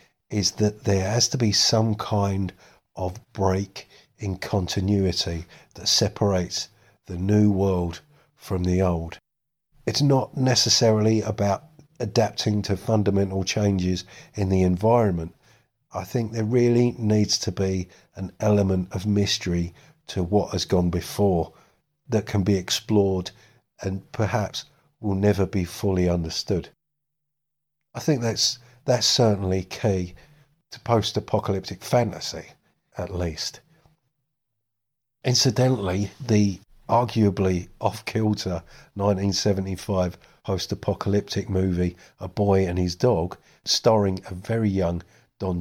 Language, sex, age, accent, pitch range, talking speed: English, male, 50-69, British, 95-115 Hz, 115 wpm